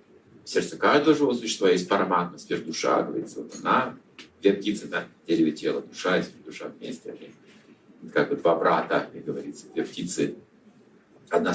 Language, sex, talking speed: Russian, male, 150 wpm